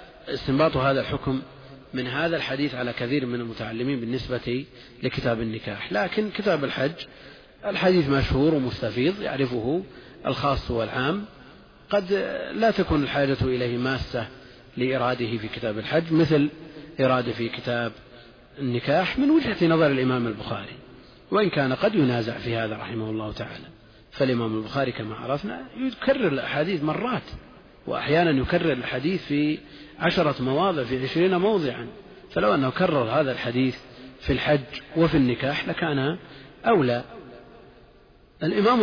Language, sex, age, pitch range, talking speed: Arabic, male, 40-59, 125-150 Hz, 120 wpm